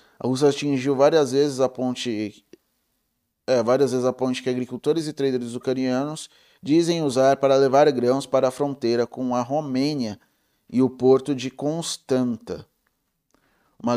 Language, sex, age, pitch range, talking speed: Portuguese, male, 20-39, 130-160 Hz, 130 wpm